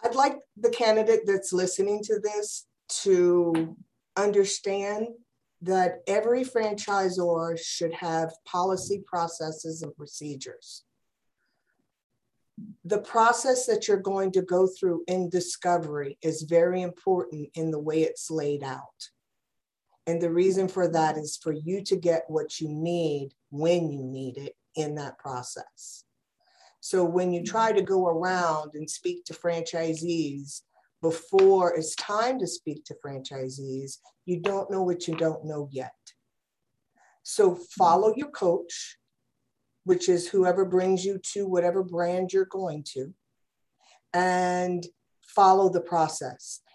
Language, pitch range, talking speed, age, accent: English, 160-195 Hz, 130 wpm, 50-69, American